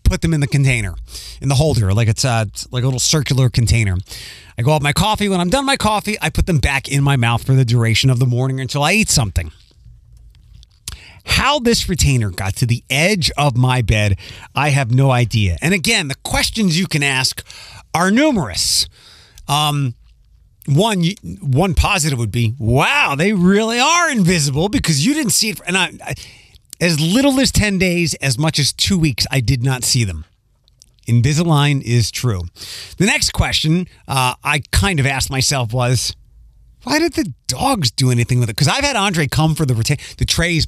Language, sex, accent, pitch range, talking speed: English, male, American, 115-170 Hz, 195 wpm